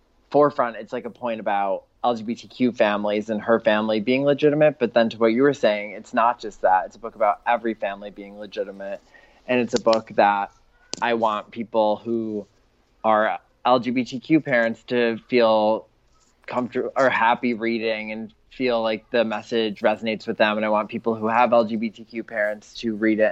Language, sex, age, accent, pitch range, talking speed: English, male, 20-39, American, 105-115 Hz, 180 wpm